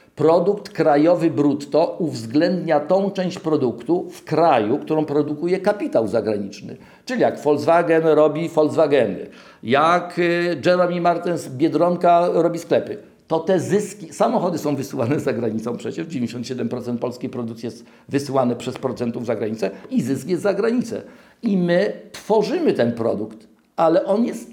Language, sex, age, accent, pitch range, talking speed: English, male, 50-69, Polish, 140-175 Hz, 135 wpm